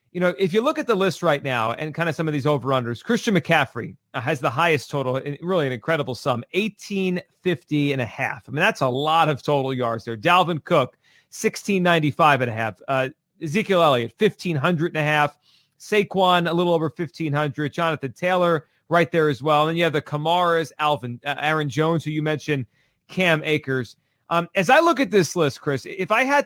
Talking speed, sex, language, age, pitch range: 205 wpm, male, English, 40-59, 140-180 Hz